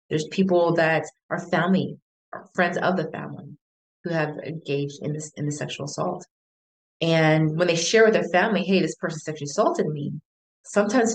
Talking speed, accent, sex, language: 180 wpm, American, female, English